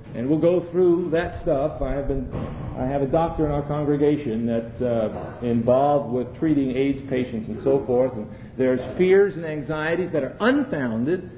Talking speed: 180 wpm